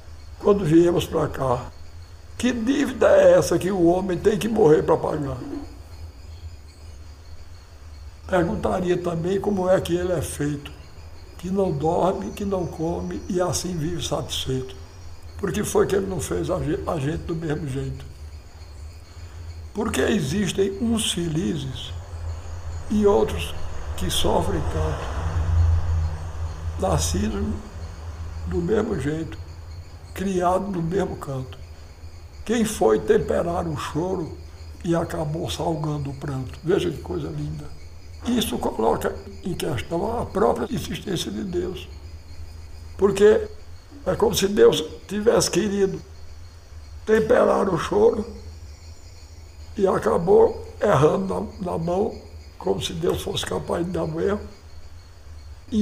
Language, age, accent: Portuguese, 60-79, Brazilian